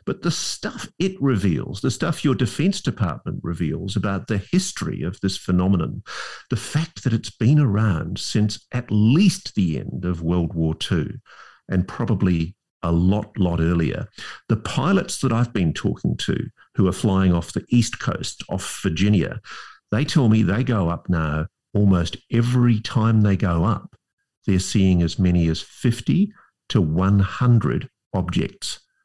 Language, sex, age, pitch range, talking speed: English, male, 50-69, 90-120 Hz, 155 wpm